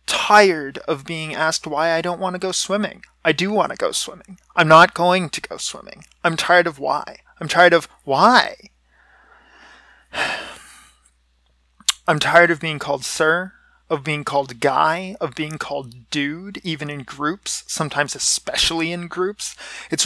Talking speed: 160 wpm